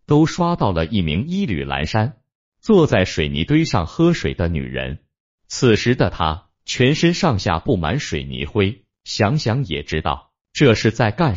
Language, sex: Chinese, male